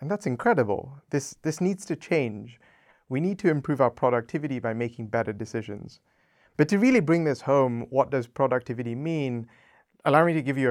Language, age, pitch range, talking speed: English, 30-49, 115-140 Hz, 185 wpm